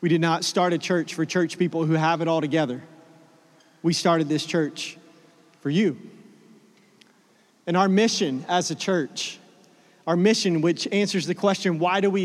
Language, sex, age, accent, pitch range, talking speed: English, male, 30-49, American, 185-230 Hz, 170 wpm